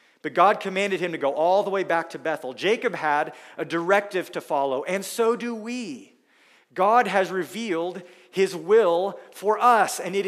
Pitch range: 155-195 Hz